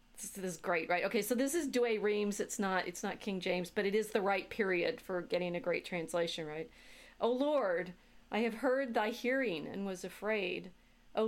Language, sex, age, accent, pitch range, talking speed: English, female, 40-59, American, 180-225 Hz, 200 wpm